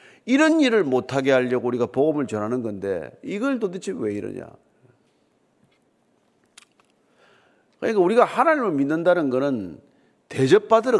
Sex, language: male, Korean